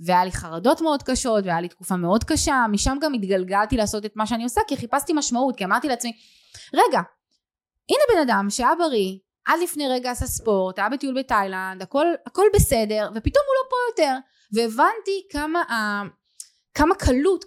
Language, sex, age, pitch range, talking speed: Hebrew, female, 20-39, 215-295 Hz, 170 wpm